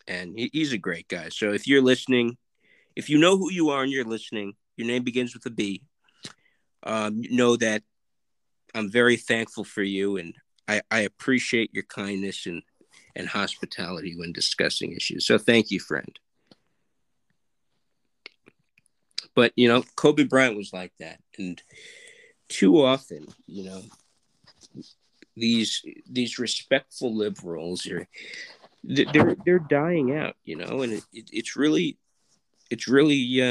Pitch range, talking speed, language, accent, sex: 100-130 Hz, 140 wpm, English, American, male